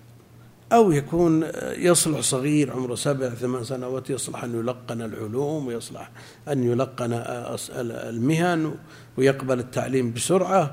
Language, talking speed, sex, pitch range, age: Arabic, 105 wpm, male, 115-145 Hz, 60-79